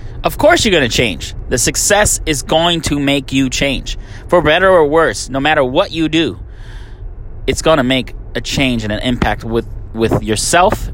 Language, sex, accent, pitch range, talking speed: English, male, American, 110-150 Hz, 190 wpm